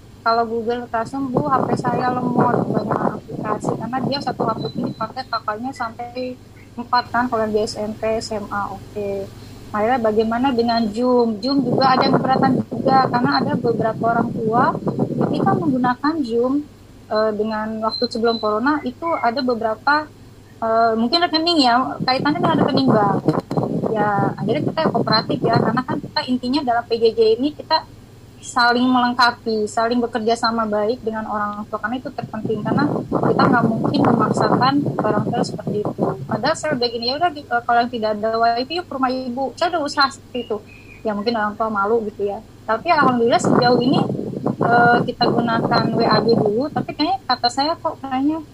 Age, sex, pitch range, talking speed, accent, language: 20-39, female, 225-275 Hz, 160 wpm, native, Indonesian